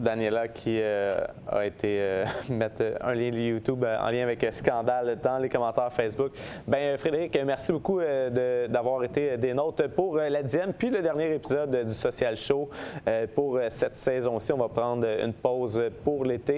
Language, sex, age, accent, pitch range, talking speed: French, male, 30-49, Canadian, 110-135 Hz, 195 wpm